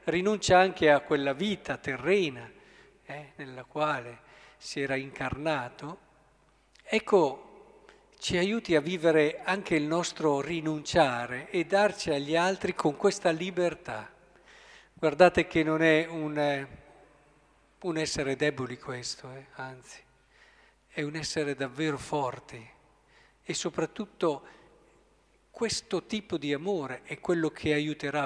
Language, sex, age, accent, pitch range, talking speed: Italian, male, 50-69, native, 145-180 Hz, 115 wpm